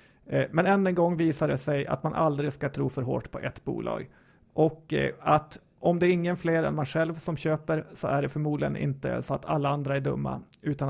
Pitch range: 140-160 Hz